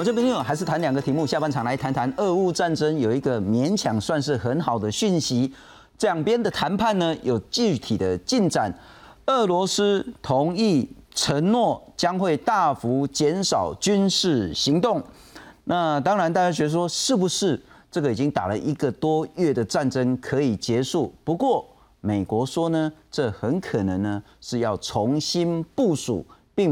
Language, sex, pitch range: Chinese, male, 120-175 Hz